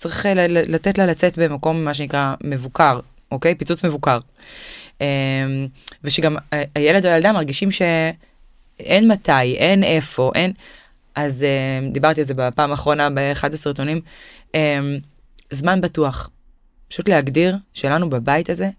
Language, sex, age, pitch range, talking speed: Hebrew, female, 20-39, 140-170 Hz, 115 wpm